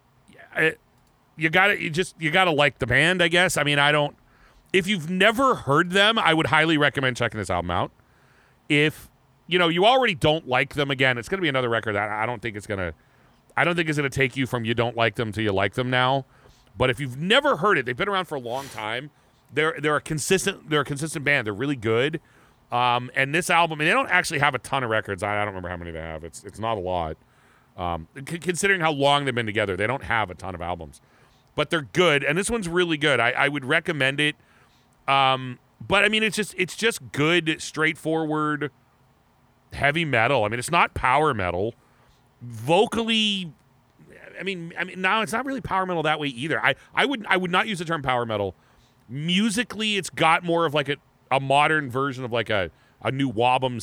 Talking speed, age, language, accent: 225 wpm, 40-59, English, American